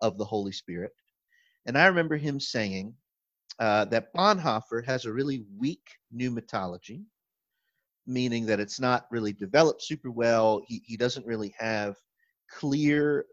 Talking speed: 140 wpm